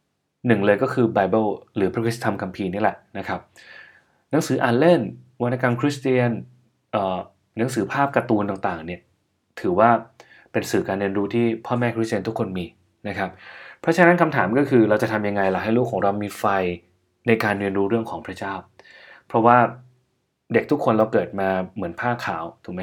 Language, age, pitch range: Thai, 20-39, 100-125 Hz